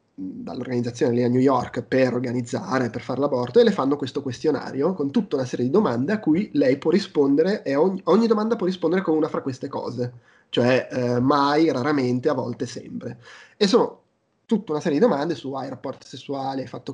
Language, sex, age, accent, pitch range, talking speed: Italian, male, 20-39, native, 130-170 Hz, 200 wpm